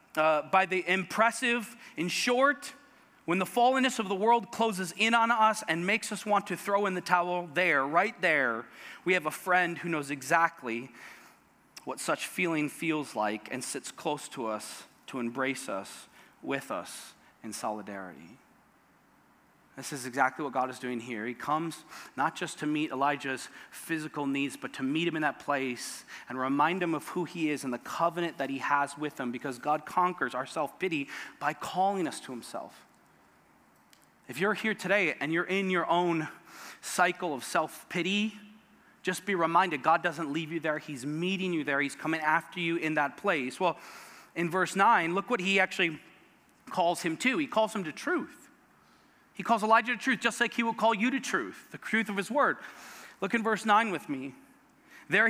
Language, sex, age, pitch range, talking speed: English, male, 30-49, 150-210 Hz, 190 wpm